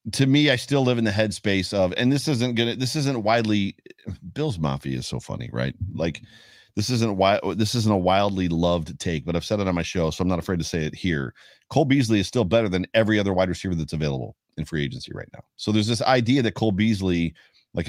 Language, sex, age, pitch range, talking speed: English, male, 40-59, 90-115 Hz, 240 wpm